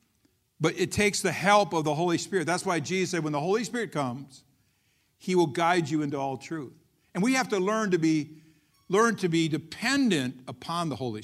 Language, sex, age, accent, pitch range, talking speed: English, male, 60-79, American, 150-195 Hz, 210 wpm